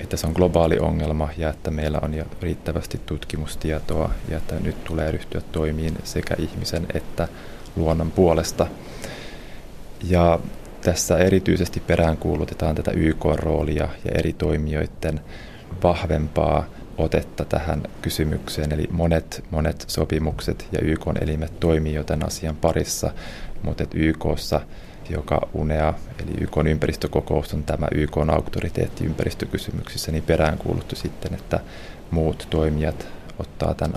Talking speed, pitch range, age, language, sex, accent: 120 wpm, 75-85 Hz, 30-49, Finnish, male, native